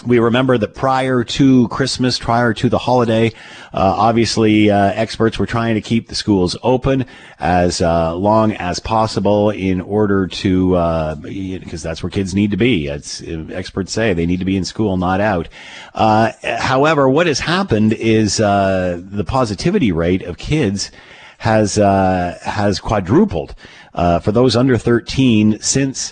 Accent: American